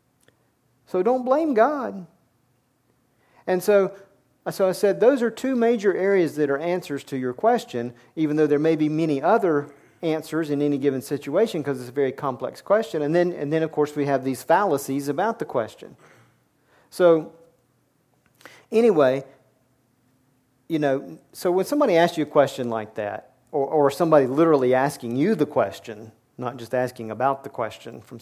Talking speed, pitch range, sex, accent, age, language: 170 wpm, 125-165 Hz, male, American, 50-69, English